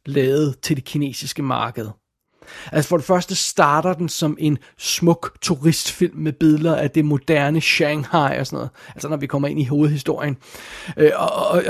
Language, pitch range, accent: Danish, 150-175 Hz, native